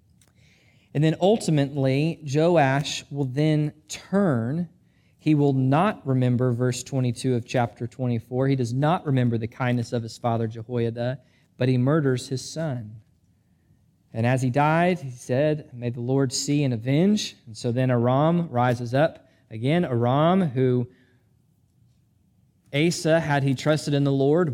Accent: American